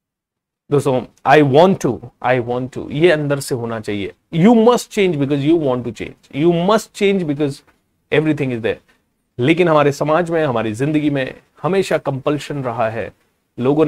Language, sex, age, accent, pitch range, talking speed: Hindi, male, 30-49, native, 135-190 Hz, 170 wpm